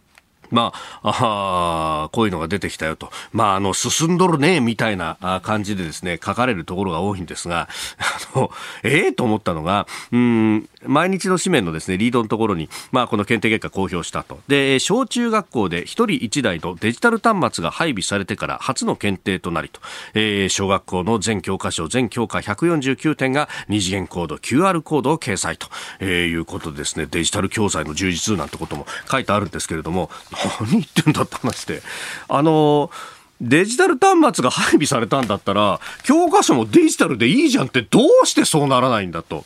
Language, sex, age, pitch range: Japanese, male, 40-59, 95-155 Hz